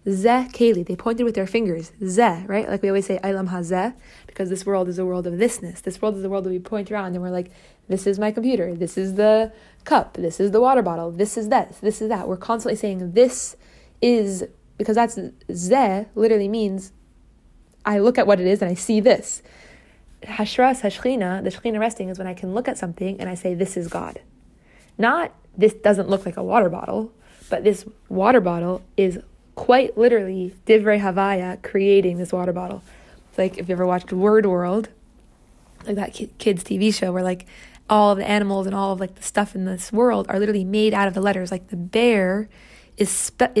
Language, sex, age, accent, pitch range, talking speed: English, female, 20-39, American, 190-220 Hz, 210 wpm